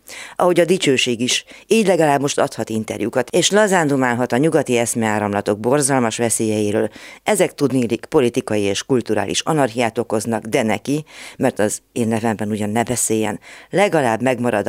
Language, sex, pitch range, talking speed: Hungarian, female, 110-135 Hz, 135 wpm